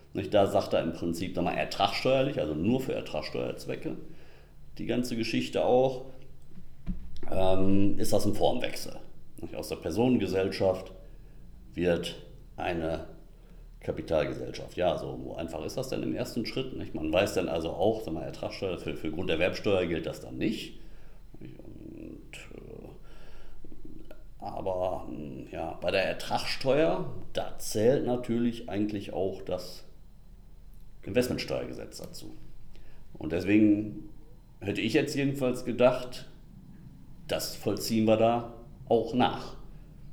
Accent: German